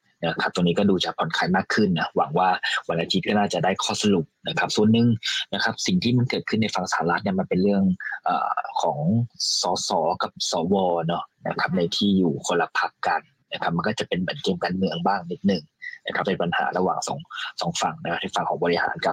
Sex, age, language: male, 20-39, Thai